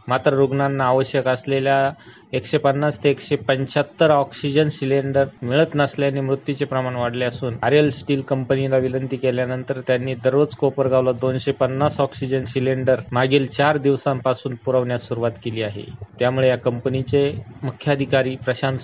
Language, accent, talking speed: Marathi, native, 130 wpm